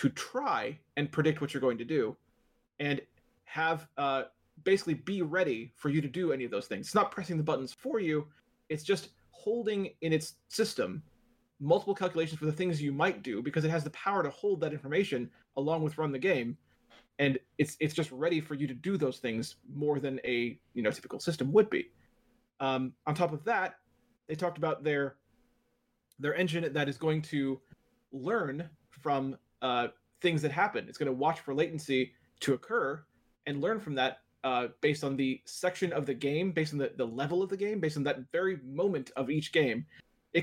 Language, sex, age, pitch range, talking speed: English, male, 30-49, 135-170 Hz, 200 wpm